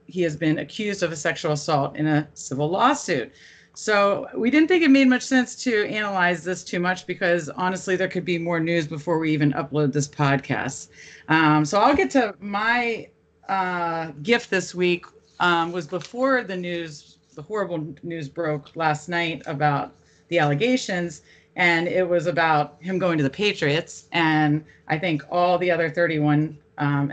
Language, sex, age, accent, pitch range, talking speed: English, female, 40-59, American, 150-185 Hz, 175 wpm